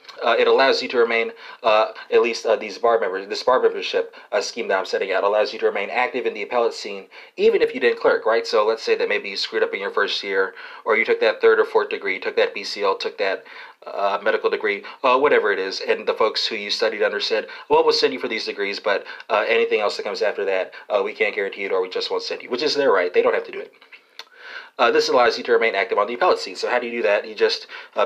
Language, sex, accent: English, male, American